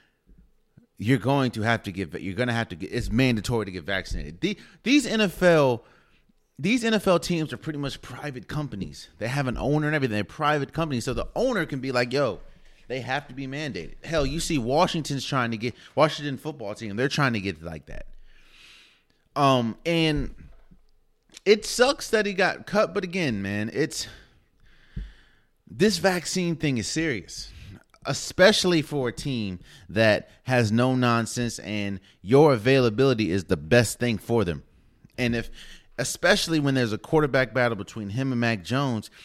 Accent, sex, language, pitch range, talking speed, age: American, male, English, 110-155 Hz, 170 wpm, 30-49